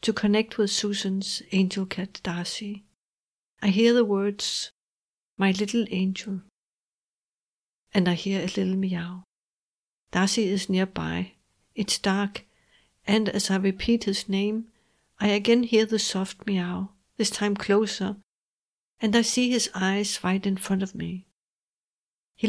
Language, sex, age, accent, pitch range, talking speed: English, female, 60-79, Danish, 190-215 Hz, 135 wpm